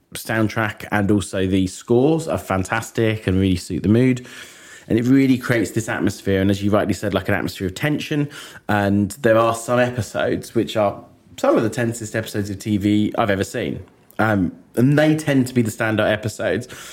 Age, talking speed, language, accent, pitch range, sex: 20-39, 190 wpm, English, British, 100-120 Hz, male